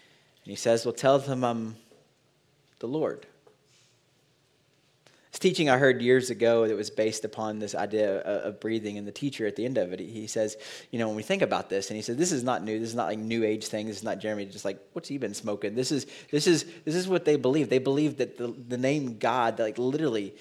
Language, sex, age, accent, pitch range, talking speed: English, male, 30-49, American, 115-145 Hz, 245 wpm